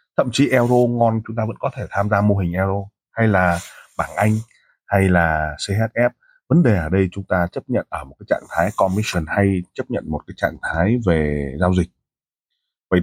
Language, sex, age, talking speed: Vietnamese, male, 20-39, 210 wpm